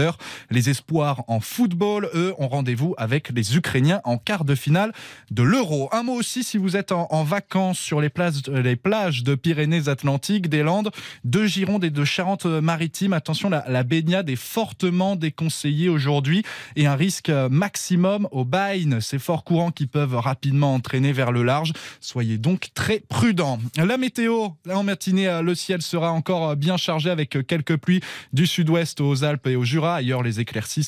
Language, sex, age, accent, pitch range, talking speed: French, male, 20-39, French, 140-190 Hz, 175 wpm